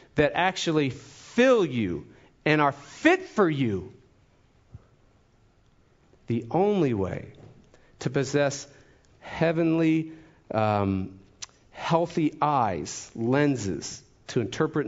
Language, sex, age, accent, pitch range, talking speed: English, male, 50-69, American, 100-130 Hz, 85 wpm